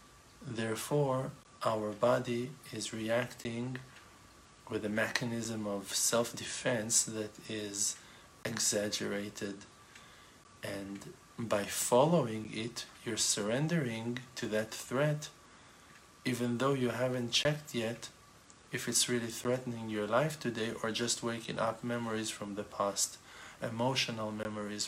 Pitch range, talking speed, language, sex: 105-120 Hz, 110 wpm, English, male